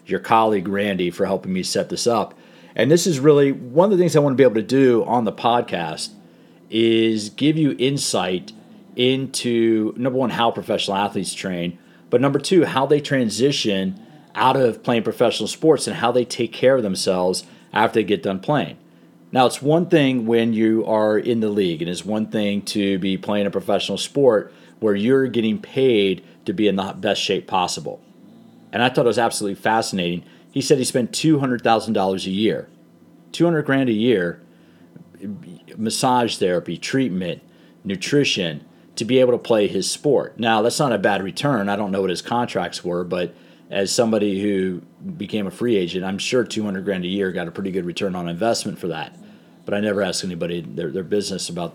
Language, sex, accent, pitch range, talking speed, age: English, male, American, 95-125 Hz, 200 wpm, 40-59